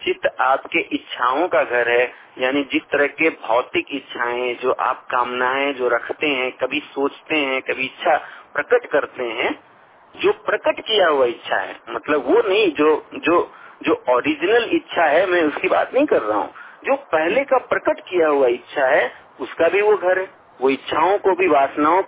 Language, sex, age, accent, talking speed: Hindi, male, 50-69, native, 175 wpm